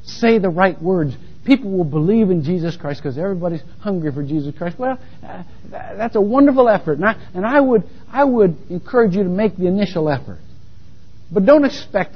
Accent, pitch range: American, 145-205 Hz